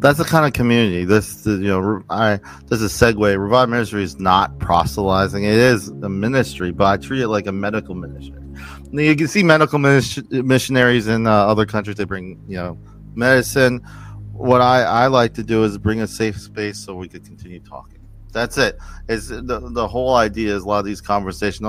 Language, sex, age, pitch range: English, male, 30-49, 95-120 Hz